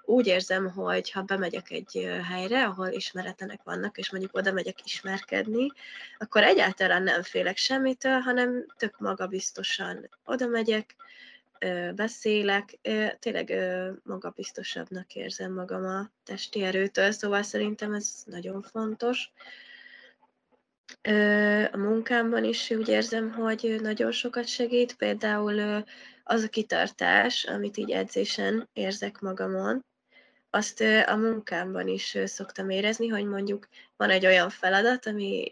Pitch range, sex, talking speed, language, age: 195-240 Hz, female, 115 wpm, Hungarian, 20-39